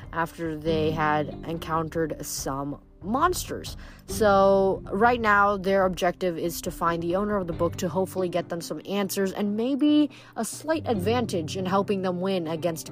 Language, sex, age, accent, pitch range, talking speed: English, female, 30-49, American, 170-245 Hz, 165 wpm